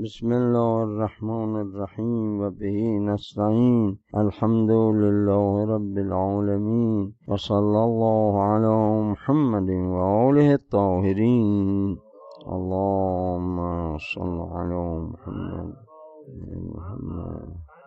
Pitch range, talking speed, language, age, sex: 105-120 Hz, 70 wpm, Persian, 50-69, male